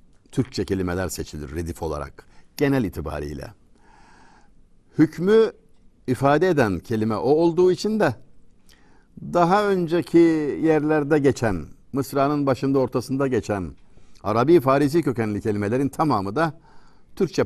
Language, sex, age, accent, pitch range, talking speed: Turkish, male, 60-79, native, 105-145 Hz, 100 wpm